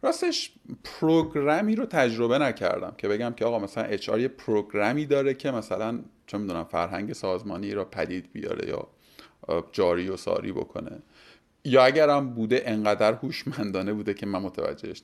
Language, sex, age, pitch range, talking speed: Persian, male, 30-49, 105-140 Hz, 150 wpm